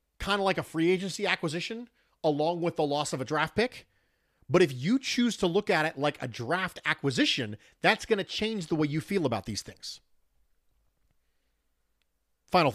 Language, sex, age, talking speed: English, male, 40-59, 185 wpm